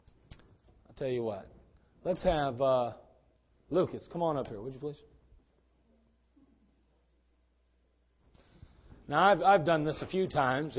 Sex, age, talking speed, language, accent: male, 40-59, 120 wpm, English, American